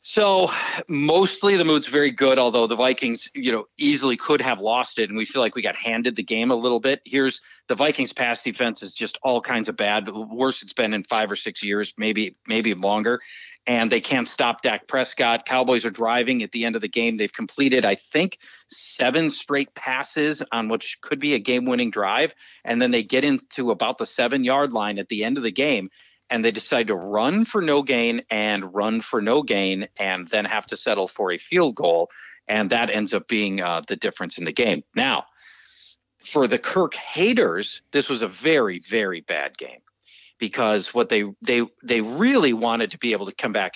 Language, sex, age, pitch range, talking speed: English, male, 40-59, 110-140 Hz, 215 wpm